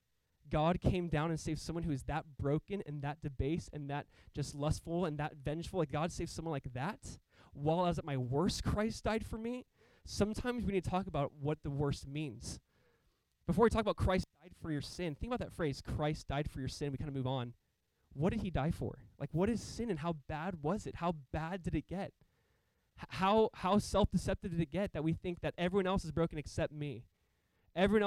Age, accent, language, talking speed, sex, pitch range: 20-39, American, English, 225 wpm, male, 145-180 Hz